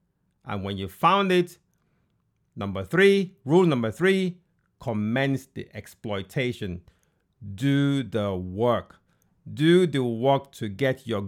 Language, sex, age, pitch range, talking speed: English, male, 50-69, 105-155 Hz, 115 wpm